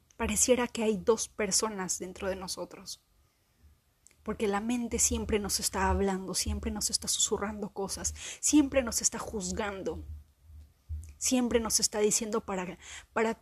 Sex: female